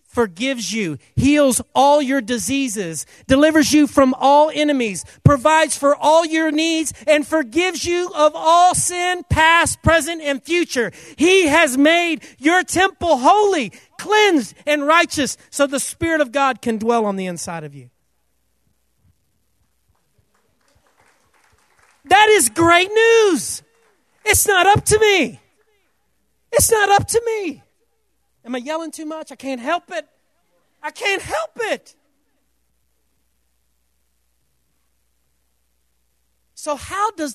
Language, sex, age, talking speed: English, male, 40-59, 125 wpm